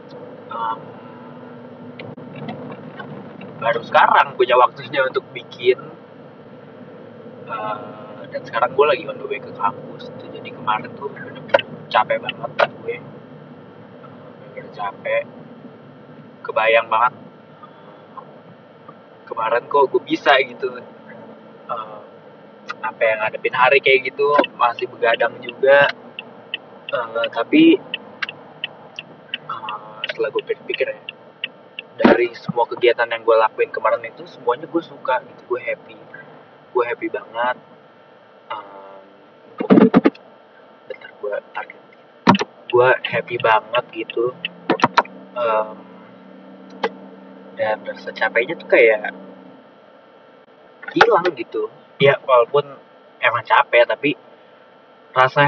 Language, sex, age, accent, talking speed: Indonesian, male, 20-39, native, 95 wpm